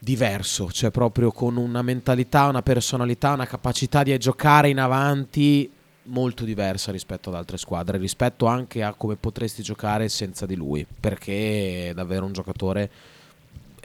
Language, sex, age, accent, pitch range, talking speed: Italian, male, 30-49, native, 100-130 Hz, 145 wpm